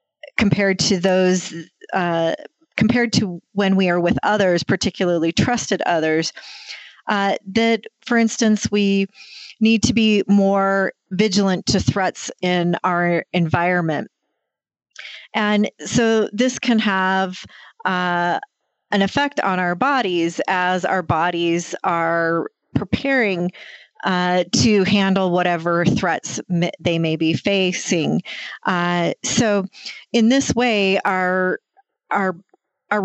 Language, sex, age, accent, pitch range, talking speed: English, female, 40-59, American, 175-210 Hz, 110 wpm